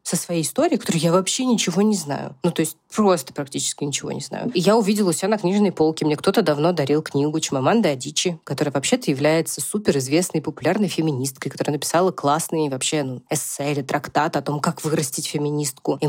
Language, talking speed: Russian, 200 wpm